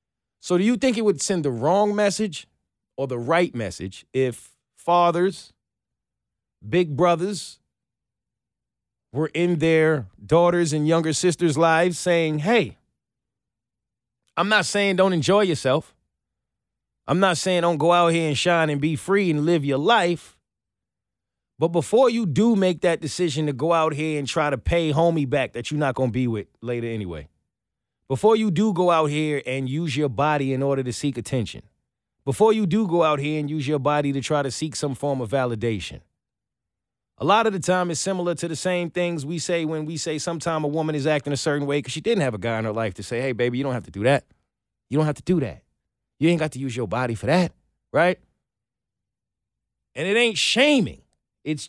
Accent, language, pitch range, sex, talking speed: American, English, 125-175 Hz, male, 200 wpm